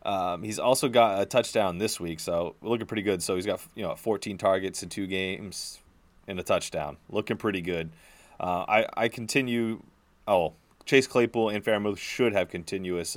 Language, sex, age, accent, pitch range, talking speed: English, male, 30-49, American, 85-100 Hz, 180 wpm